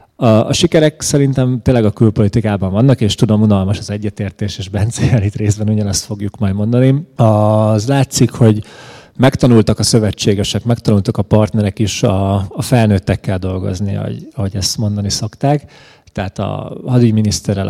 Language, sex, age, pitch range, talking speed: Hungarian, male, 30-49, 100-120 Hz, 135 wpm